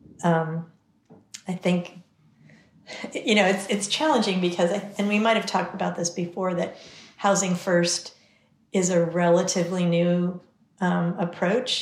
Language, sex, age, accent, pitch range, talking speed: English, female, 40-59, American, 170-190 Hz, 125 wpm